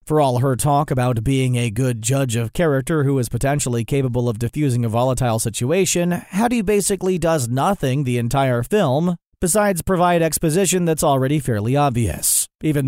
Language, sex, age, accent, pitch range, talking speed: English, male, 40-59, American, 125-165 Hz, 165 wpm